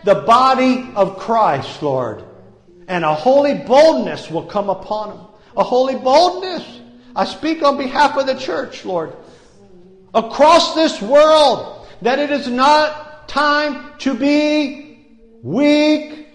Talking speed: 130 wpm